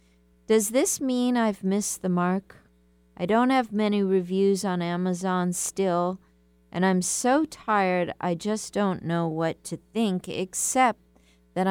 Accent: American